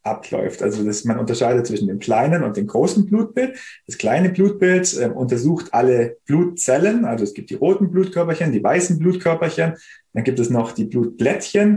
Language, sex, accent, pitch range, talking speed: German, male, German, 120-175 Hz, 175 wpm